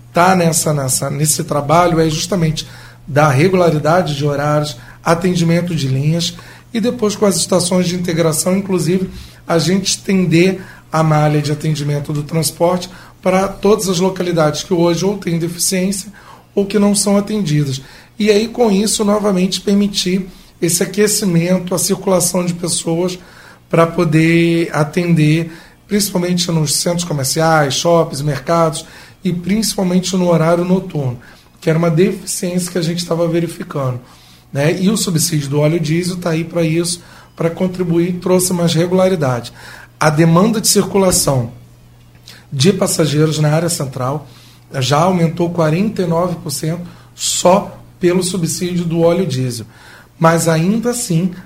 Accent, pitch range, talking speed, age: Brazilian, 155-185 Hz, 135 wpm, 40-59